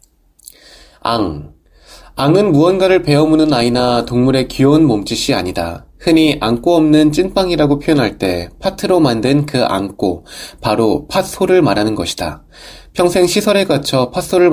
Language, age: Korean, 20-39